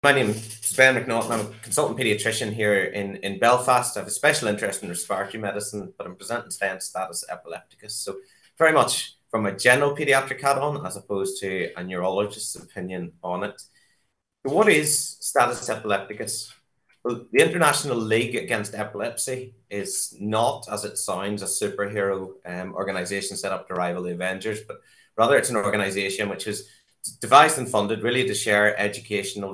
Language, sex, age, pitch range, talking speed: English, male, 30-49, 95-115 Hz, 170 wpm